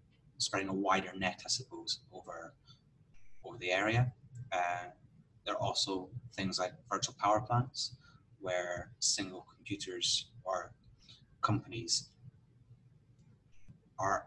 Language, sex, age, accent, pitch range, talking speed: English, male, 30-49, British, 100-130 Hz, 105 wpm